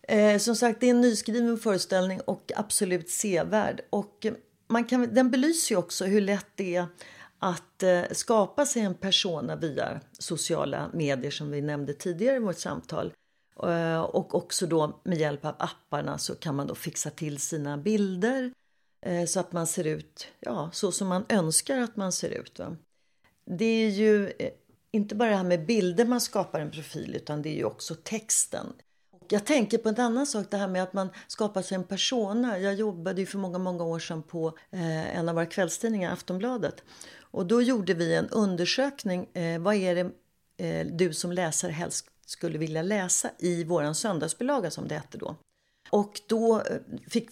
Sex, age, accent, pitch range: female, 40-59, native, 165-215 Hz